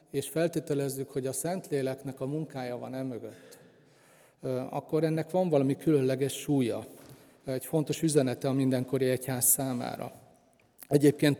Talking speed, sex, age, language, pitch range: 120 wpm, male, 40-59, Hungarian, 135-155 Hz